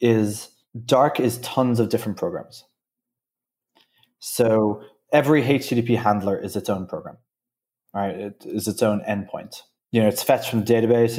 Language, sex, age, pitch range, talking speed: English, male, 20-39, 105-120 Hz, 150 wpm